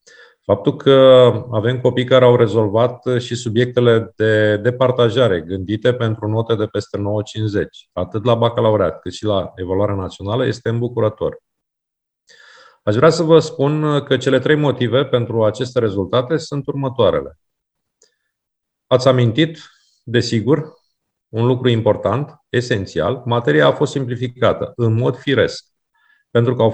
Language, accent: Romanian, native